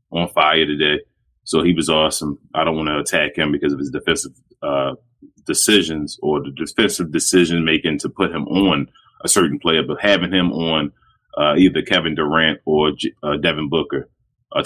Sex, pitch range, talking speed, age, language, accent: male, 80-90 Hz, 185 wpm, 30-49, English, American